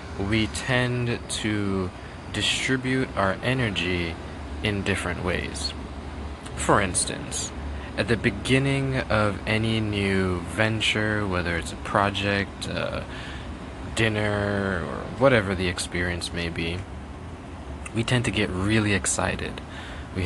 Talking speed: 110 wpm